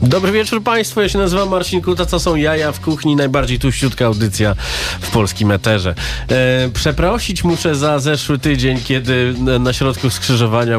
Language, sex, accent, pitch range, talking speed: Polish, male, native, 95-120 Hz, 165 wpm